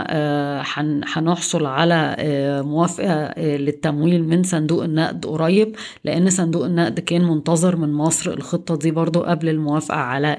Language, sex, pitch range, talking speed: Arabic, female, 150-170 Hz, 120 wpm